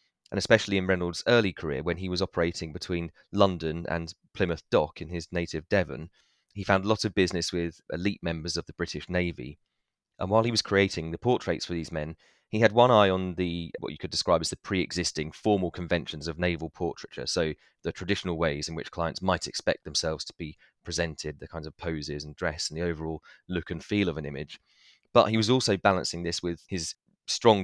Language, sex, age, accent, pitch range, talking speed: English, male, 30-49, British, 80-95 Hz, 210 wpm